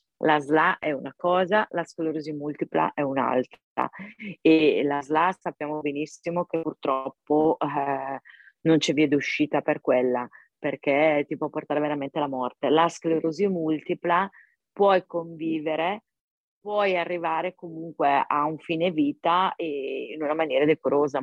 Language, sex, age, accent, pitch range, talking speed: Italian, female, 30-49, native, 150-185 Hz, 135 wpm